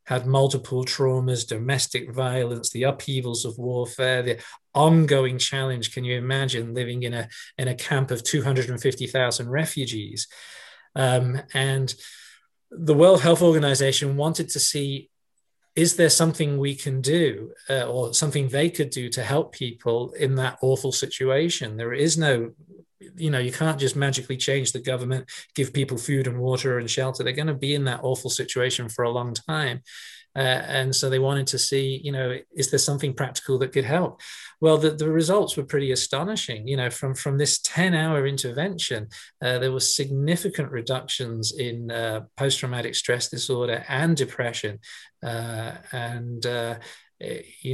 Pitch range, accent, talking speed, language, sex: 125-145 Hz, British, 160 wpm, English, male